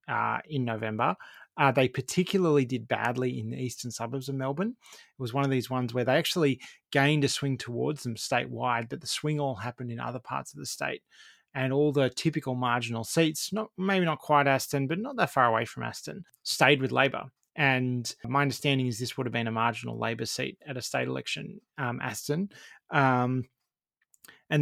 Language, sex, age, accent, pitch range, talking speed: English, male, 30-49, Australian, 125-150 Hz, 195 wpm